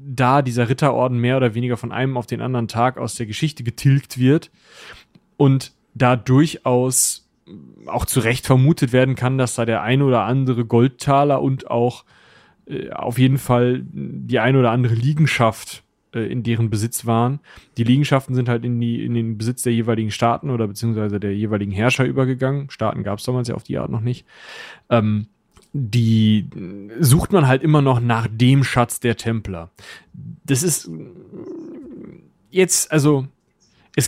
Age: 30-49